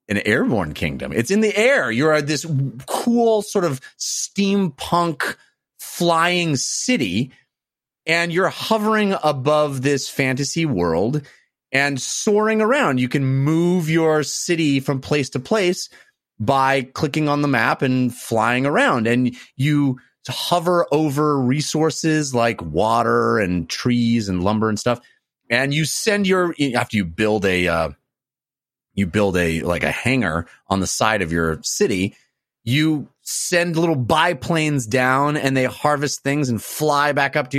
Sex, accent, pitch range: male, American, 120-165 Hz